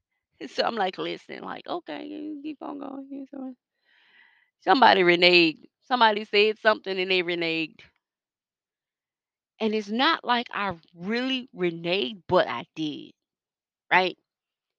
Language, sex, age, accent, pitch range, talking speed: English, female, 30-49, American, 180-235 Hz, 115 wpm